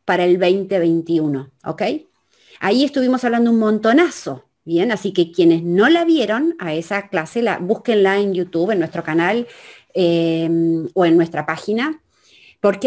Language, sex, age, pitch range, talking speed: Spanish, female, 30-49, 180-265 Hz, 150 wpm